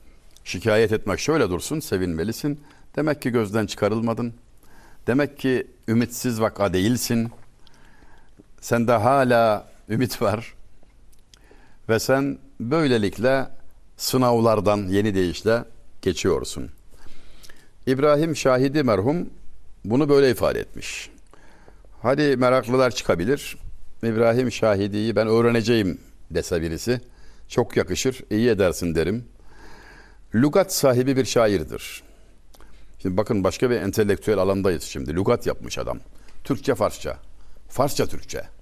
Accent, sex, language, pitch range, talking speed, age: native, male, Turkish, 100-130 Hz, 95 wpm, 60-79